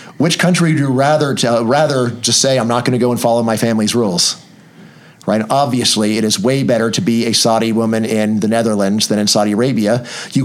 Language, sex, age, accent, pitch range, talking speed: English, male, 40-59, American, 115-135 Hz, 225 wpm